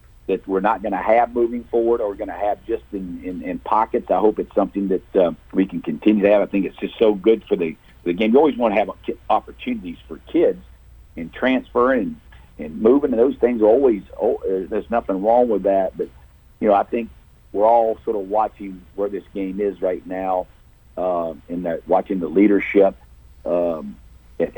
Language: English